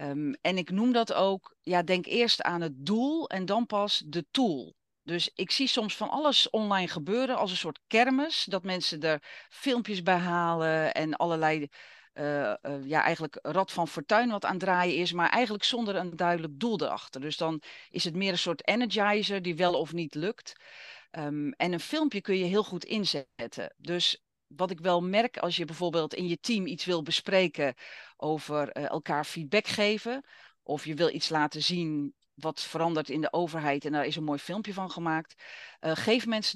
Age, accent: 40-59, Dutch